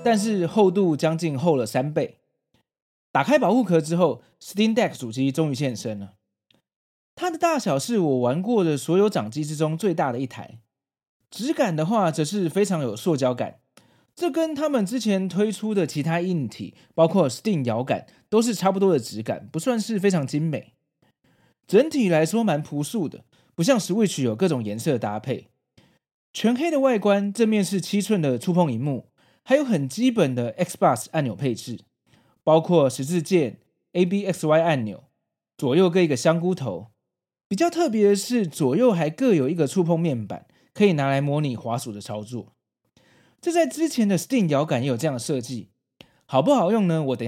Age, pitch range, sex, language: 20-39, 130-205 Hz, male, Chinese